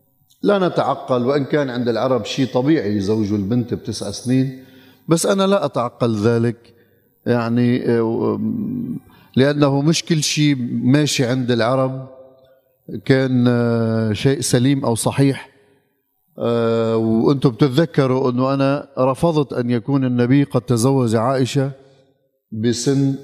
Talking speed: 110 wpm